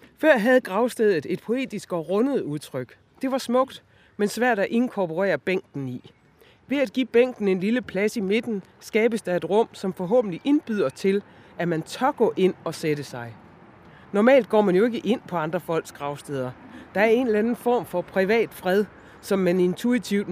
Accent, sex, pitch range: native, female, 165-225 Hz